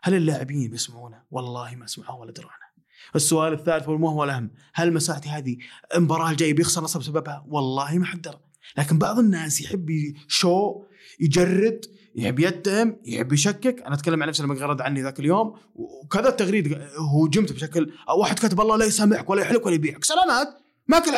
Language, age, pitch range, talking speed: Arabic, 20-39, 140-190 Hz, 165 wpm